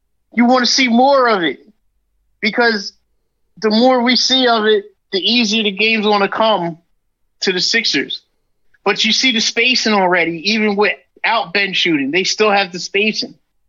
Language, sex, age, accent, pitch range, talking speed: English, male, 30-49, American, 180-220 Hz, 170 wpm